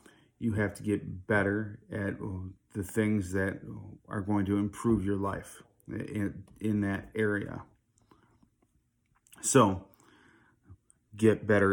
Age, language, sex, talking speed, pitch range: 30-49, English, male, 115 wpm, 100-110 Hz